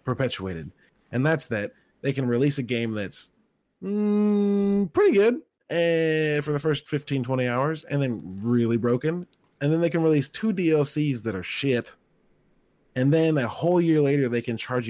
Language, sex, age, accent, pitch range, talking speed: English, male, 20-39, American, 115-155 Hz, 175 wpm